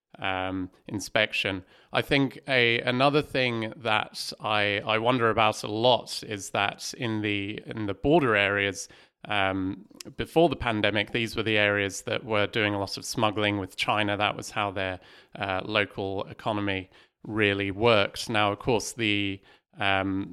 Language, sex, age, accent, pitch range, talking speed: English, male, 30-49, British, 100-110 Hz, 155 wpm